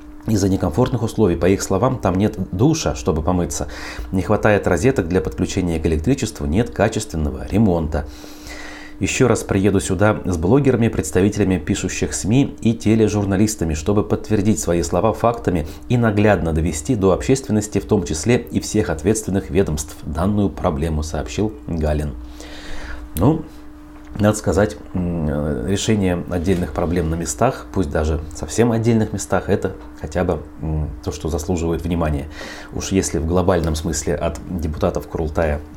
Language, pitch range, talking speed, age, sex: Russian, 80-105 Hz, 135 wpm, 30-49, male